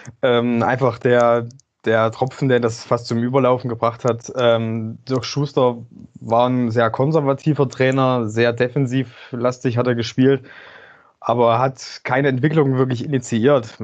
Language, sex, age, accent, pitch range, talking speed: German, male, 20-39, German, 115-135 Hz, 140 wpm